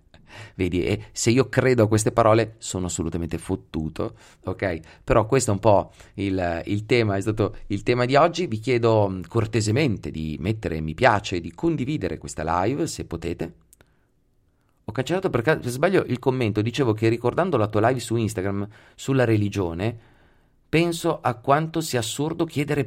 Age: 30-49